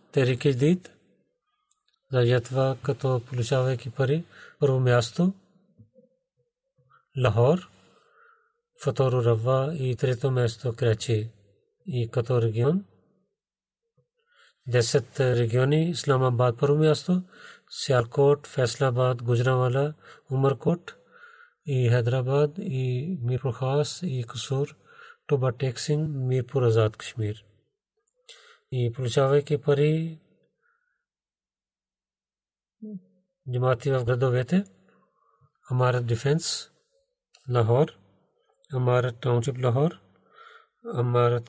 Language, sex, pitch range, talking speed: Bulgarian, male, 125-155 Hz, 70 wpm